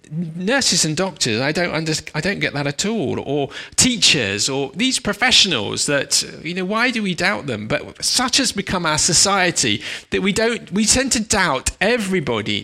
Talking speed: 185 wpm